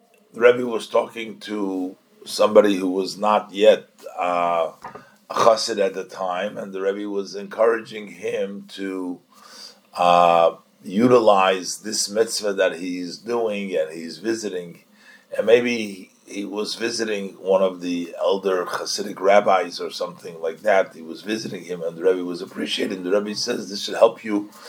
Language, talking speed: English, 155 wpm